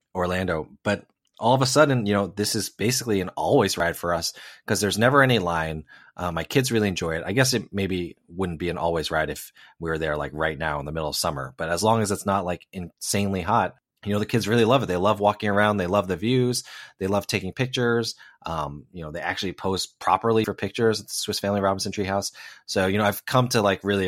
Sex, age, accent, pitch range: male, 30-49, American, 85-110 Hz